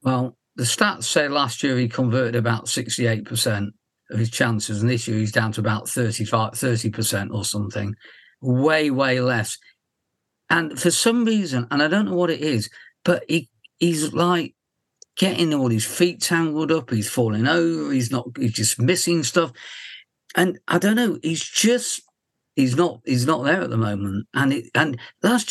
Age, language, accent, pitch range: 50-69, English, British, 120-165 Hz